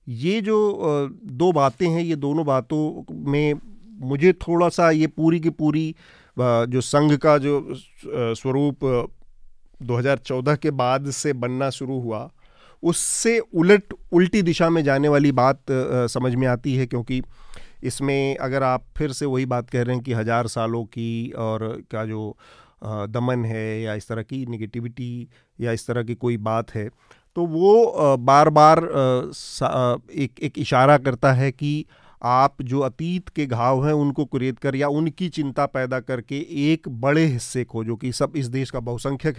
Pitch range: 125-155 Hz